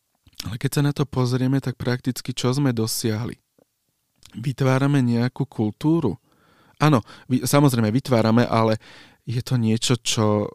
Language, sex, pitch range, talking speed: Slovak, male, 110-125 Hz, 125 wpm